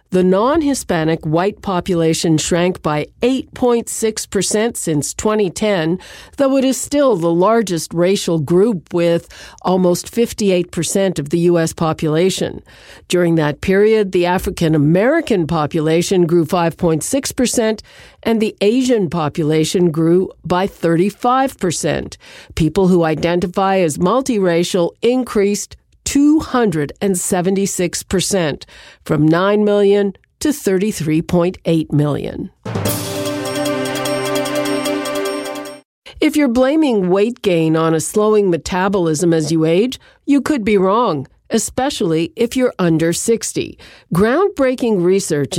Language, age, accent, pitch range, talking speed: English, 50-69, American, 165-215 Hz, 95 wpm